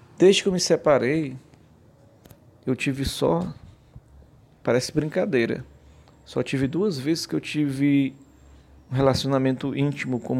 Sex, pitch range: male, 120-140 Hz